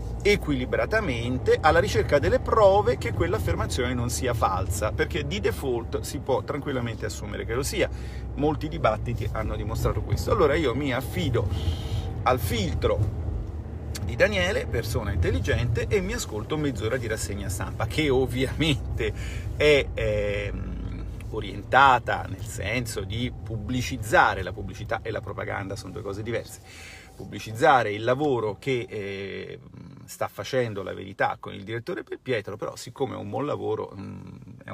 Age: 40-59